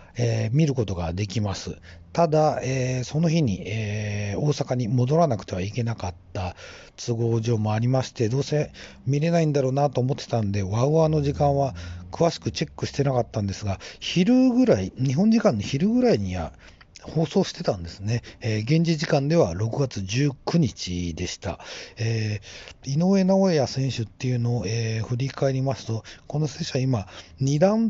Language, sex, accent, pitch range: Japanese, male, native, 100-145 Hz